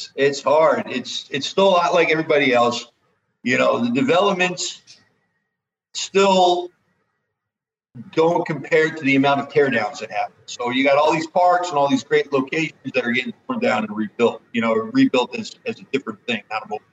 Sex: male